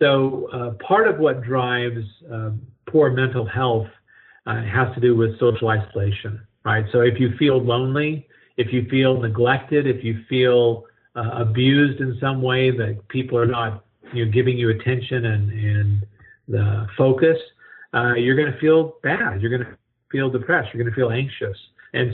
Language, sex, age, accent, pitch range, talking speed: English, male, 50-69, American, 115-135 Hz, 175 wpm